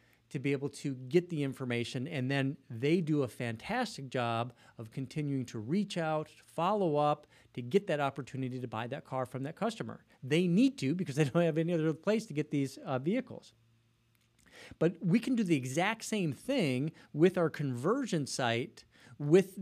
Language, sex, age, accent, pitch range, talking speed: English, male, 40-59, American, 125-175 Hz, 185 wpm